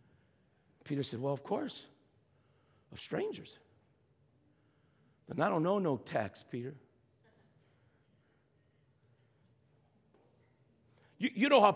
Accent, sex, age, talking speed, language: American, male, 50-69, 90 wpm, English